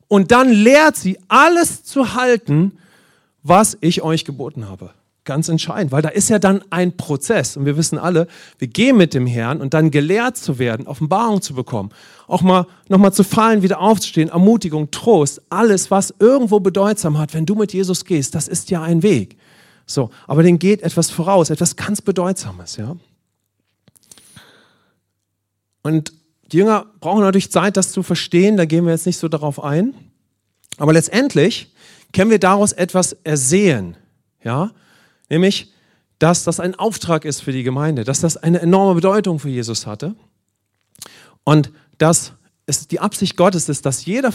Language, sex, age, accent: English, male, 40-59, German